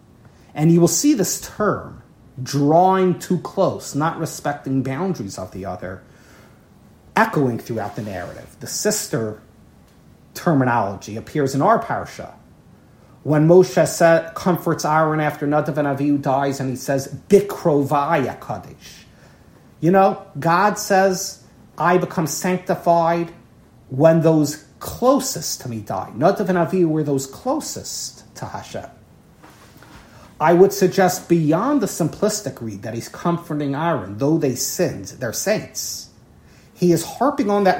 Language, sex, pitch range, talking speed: English, male, 135-180 Hz, 130 wpm